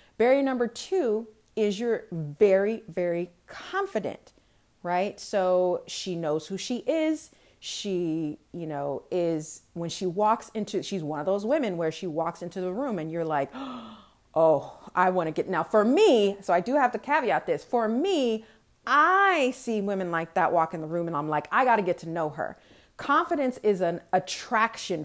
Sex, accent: female, American